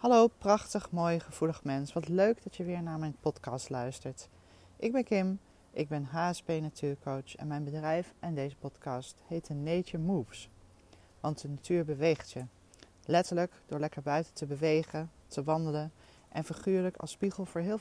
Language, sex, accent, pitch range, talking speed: Dutch, female, Dutch, 140-180 Hz, 170 wpm